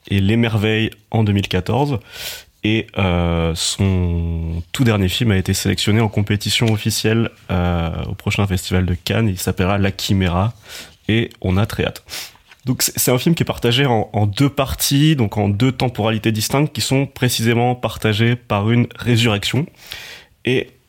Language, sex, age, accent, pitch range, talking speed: French, male, 20-39, French, 95-115 Hz, 160 wpm